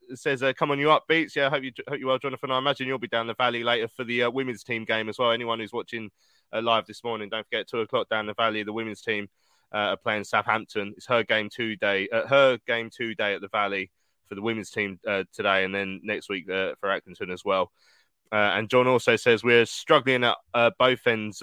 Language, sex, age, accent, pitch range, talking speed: English, male, 20-39, British, 105-135 Hz, 250 wpm